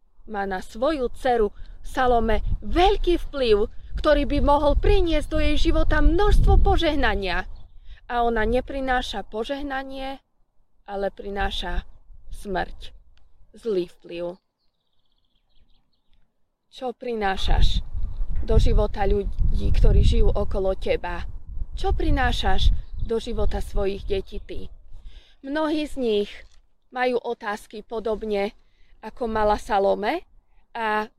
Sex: female